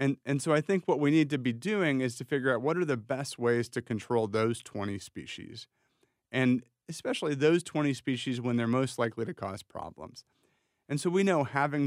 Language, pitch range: English, 110-145 Hz